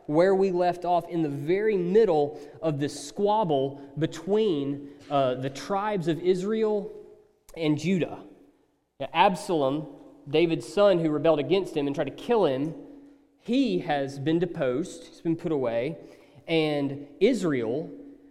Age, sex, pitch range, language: 30-49, male, 145-230 Hz, English